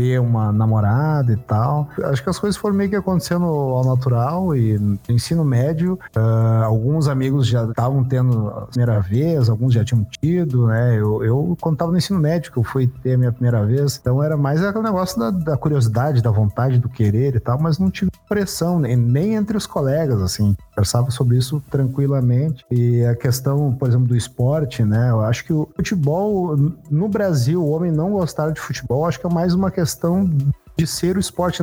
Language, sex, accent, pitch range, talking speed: Portuguese, male, Brazilian, 120-160 Hz, 200 wpm